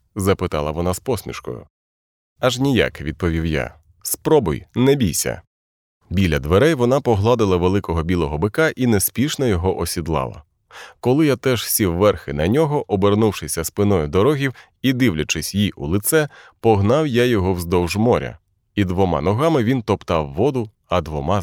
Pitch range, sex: 90-115 Hz, male